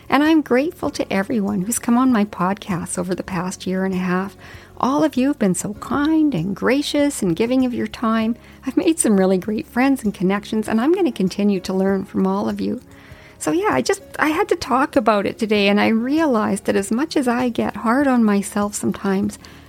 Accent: American